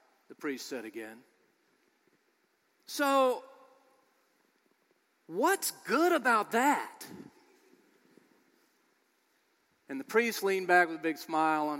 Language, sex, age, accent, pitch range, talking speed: English, male, 40-59, American, 200-330 Hz, 95 wpm